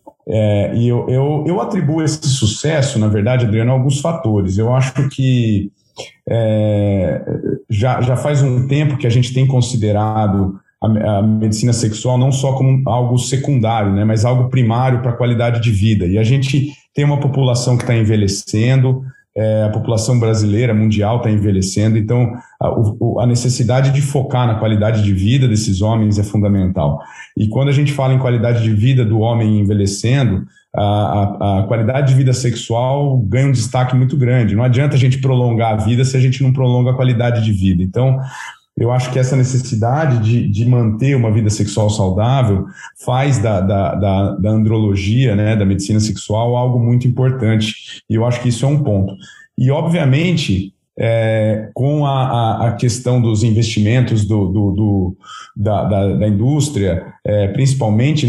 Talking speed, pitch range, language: 160 wpm, 105-130 Hz, Portuguese